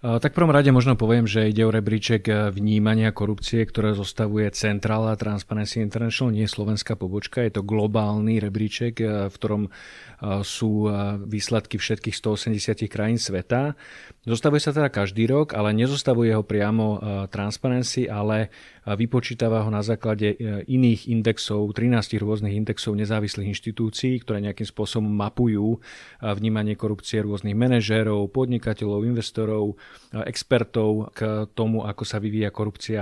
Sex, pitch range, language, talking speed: male, 105-115 Hz, Slovak, 125 wpm